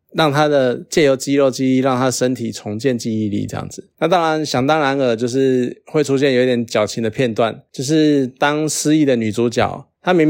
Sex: male